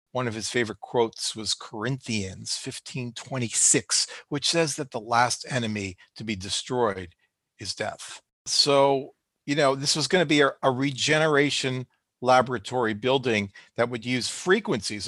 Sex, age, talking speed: male, 40-59, 145 wpm